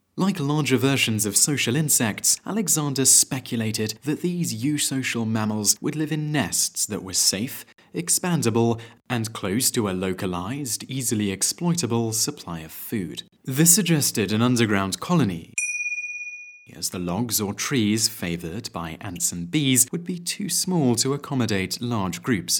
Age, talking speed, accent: 30-49, 140 wpm, British